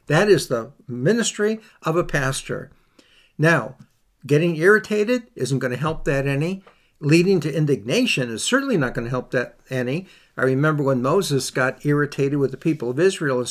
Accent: American